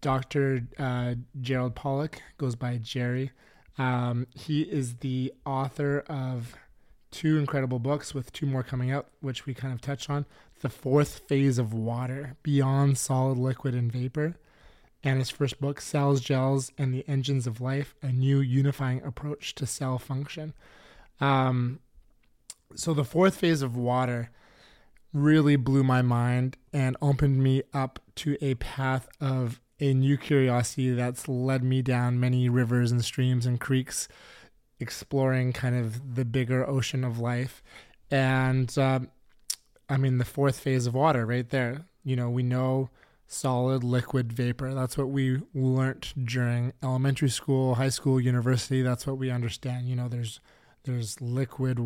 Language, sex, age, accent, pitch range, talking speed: English, male, 20-39, American, 125-140 Hz, 155 wpm